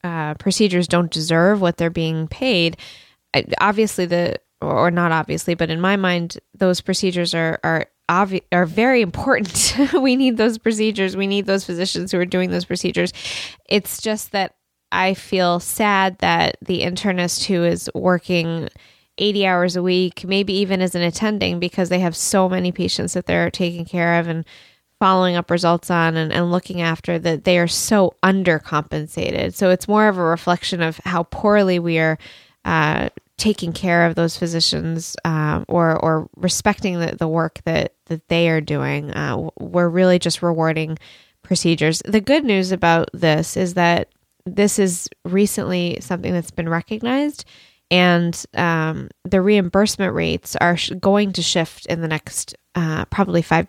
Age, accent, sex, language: 10-29, American, female, English